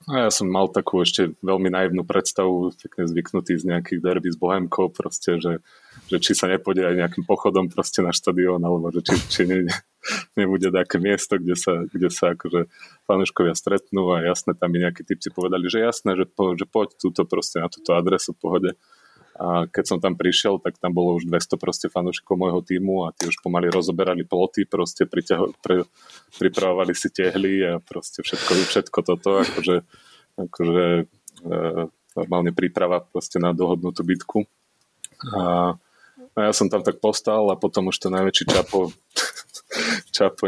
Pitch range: 90-95 Hz